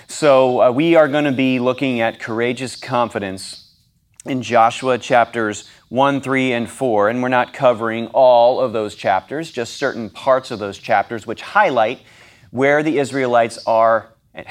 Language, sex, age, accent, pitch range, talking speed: English, male, 30-49, American, 115-135 Hz, 160 wpm